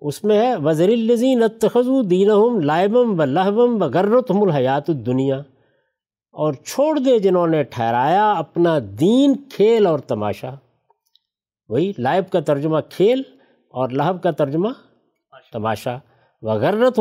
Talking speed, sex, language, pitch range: 125 wpm, male, Urdu, 135-215 Hz